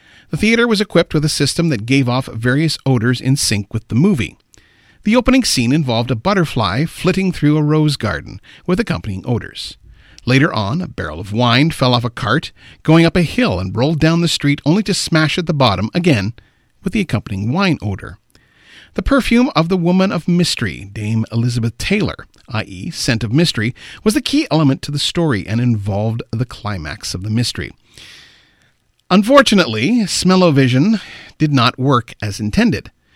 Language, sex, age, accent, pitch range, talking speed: English, male, 40-59, American, 110-165 Hz, 175 wpm